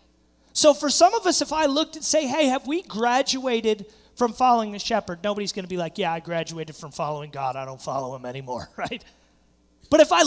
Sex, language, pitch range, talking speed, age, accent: male, English, 155-255 Hz, 220 wpm, 30-49, American